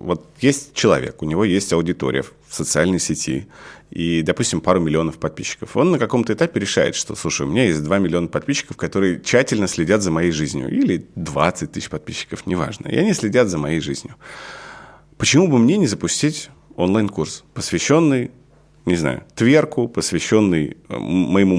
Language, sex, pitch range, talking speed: Russian, male, 80-100 Hz, 160 wpm